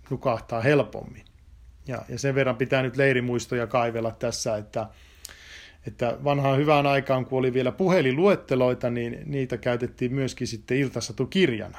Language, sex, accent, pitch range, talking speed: Finnish, male, native, 115-140 Hz, 130 wpm